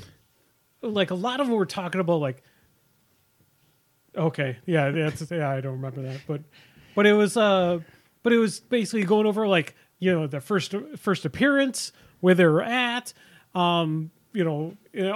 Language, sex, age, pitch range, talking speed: English, male, 30-49, 150-190 Hz, 170 wpm